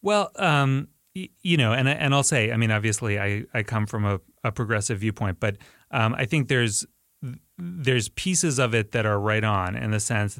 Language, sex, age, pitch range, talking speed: English, male, 30-49, 105-130 Hz, 200 wpm